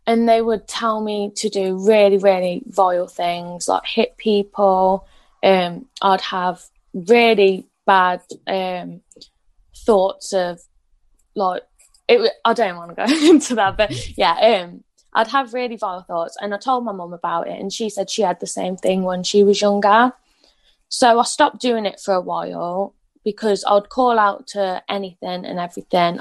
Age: 20-39